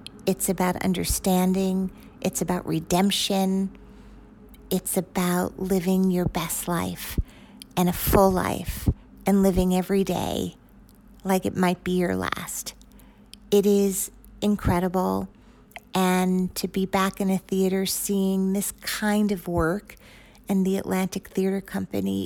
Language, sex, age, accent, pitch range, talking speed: English, female, 50-69, American, 180-215 Hz, 125 wpm